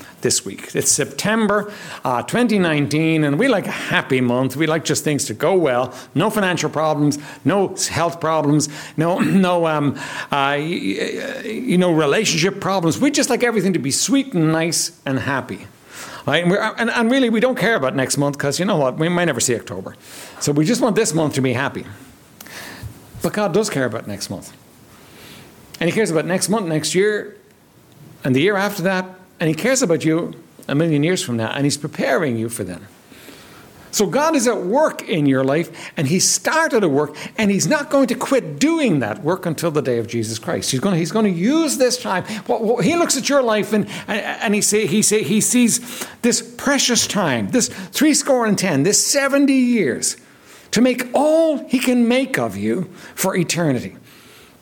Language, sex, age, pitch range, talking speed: English, male, 60-79, 150-230 Hz, 195 wpm